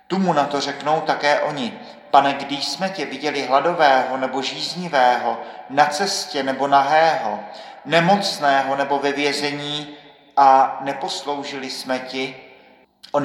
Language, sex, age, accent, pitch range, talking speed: Czech, male, 40-59, native, 125-145 Hz, 120 wpm